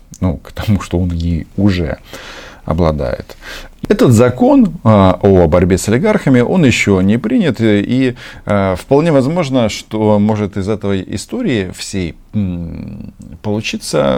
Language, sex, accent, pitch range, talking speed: Russian, male, native, 85-110 Hz, 120 wpm